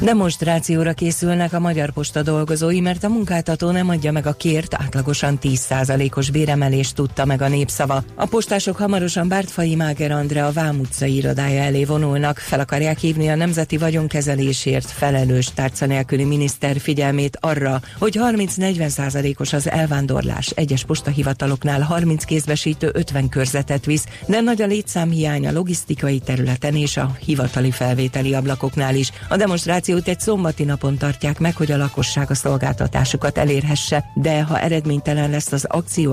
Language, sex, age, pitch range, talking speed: Hungarian, female, 40-59, 135-160 Hz, 145 wpm